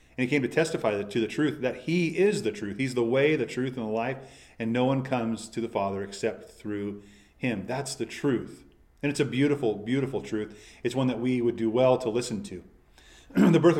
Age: 40-59